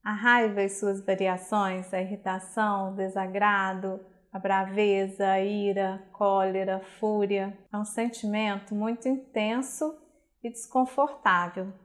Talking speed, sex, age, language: 120 wpm, female, 20-39, Portuguese